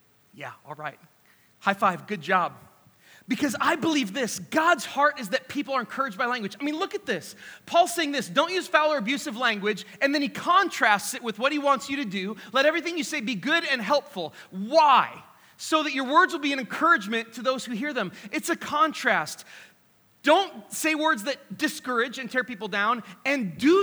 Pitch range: 210-290 Hz